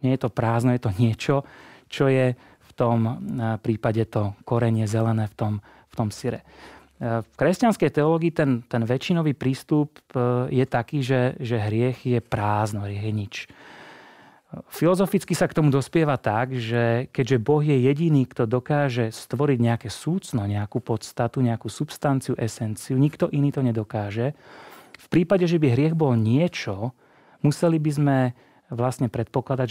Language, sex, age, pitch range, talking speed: Czech, male, 30-49, 115-145 Hz, 145 wpm